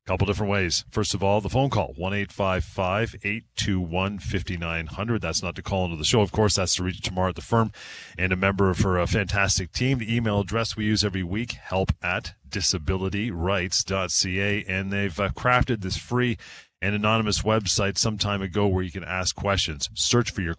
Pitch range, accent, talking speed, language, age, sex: 90-110 Hz, American, 190 wpm, English, 30-49, male